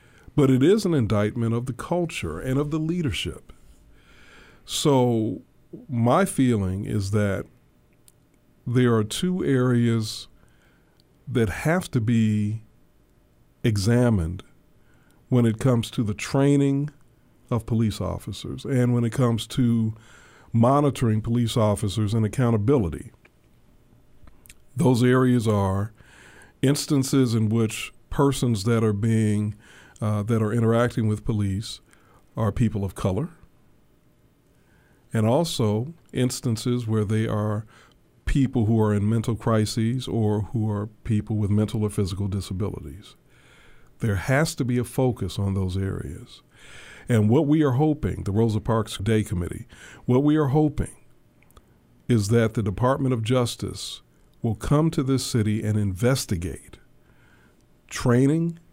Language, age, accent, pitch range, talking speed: English, 50-69, American, 105-130 Hz, 125 wpm